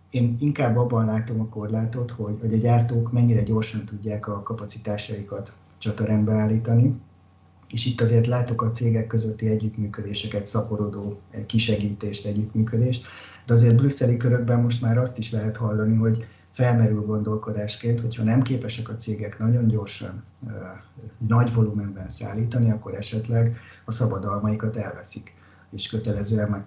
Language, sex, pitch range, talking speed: Hungarian, male, 105-115 Hz, 130 wpm